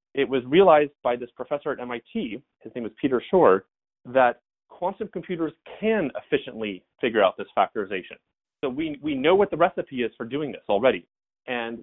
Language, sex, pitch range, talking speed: English, male, 120-180 Hz, 180 wpm